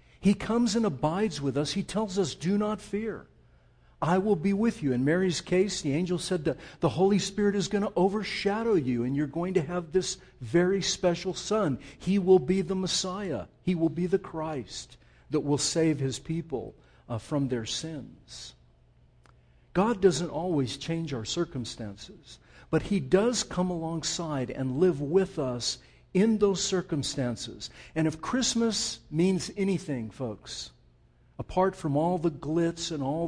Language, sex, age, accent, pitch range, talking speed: English, male, 50-69, American, 135-190 Hz, 165 wpm